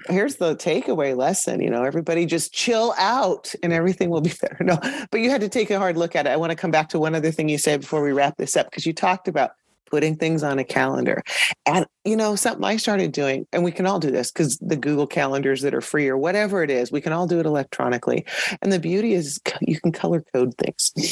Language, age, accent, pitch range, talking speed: English, 40-59, American, 140-180 Hz, 255 wpm